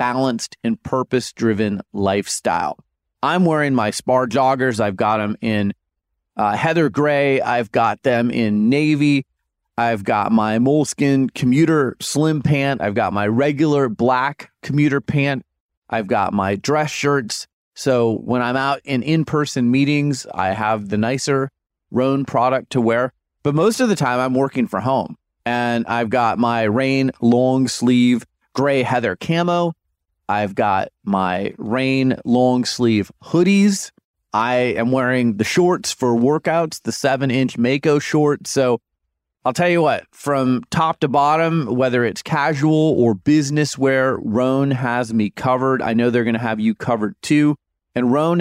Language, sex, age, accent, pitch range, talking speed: English, male, 30-49, American, 115-145 Hz, 150 wpm